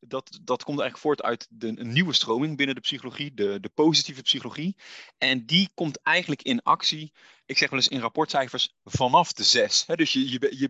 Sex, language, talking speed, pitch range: male, Dutch, 190 wpm, 120-160 Hz